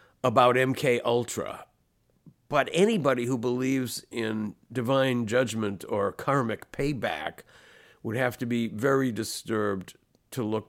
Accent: American